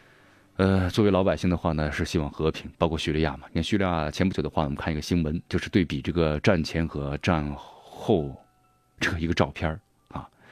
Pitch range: 80-105 Hz